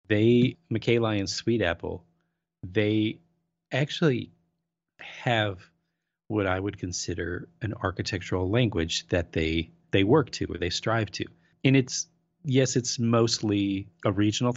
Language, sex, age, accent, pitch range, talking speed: English, male, 30-49, American, 85-115 Hz, 130 wpm